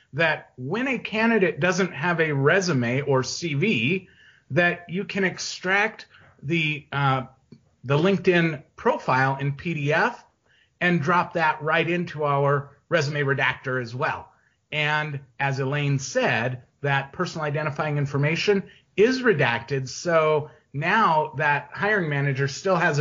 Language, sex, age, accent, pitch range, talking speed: English, male, 30-49, American, 140-185 Hz, 125 wpm